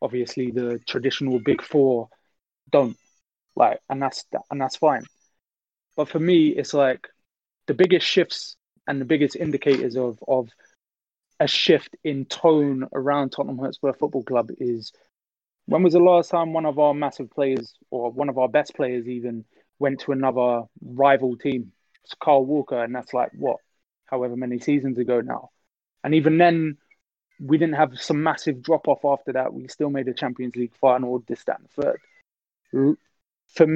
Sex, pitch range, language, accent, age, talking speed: male, 130-155 Hz, English, British, 20-39, 160 wpm